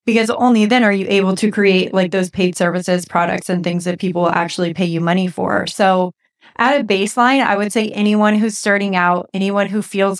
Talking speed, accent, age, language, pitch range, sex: 210 wpm, American, 20-39, English, 185-210 Hz, female